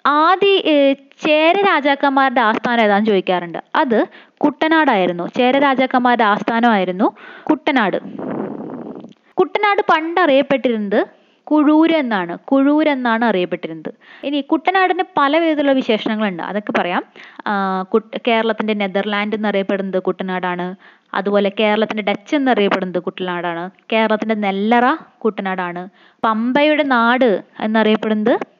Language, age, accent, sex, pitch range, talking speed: Malayalam, 20-39, native, female, 205-280 Hz, 90 wpm